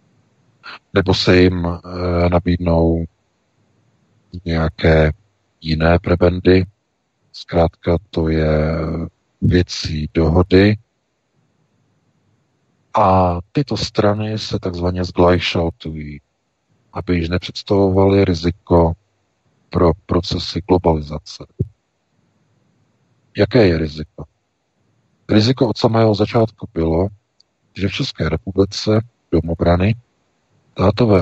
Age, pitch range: 50-69, 85-105 Hz